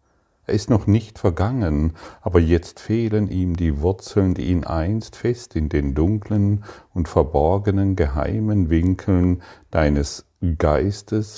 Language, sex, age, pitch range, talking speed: German, male, 50-69, 85-100 Hz, 125 wpm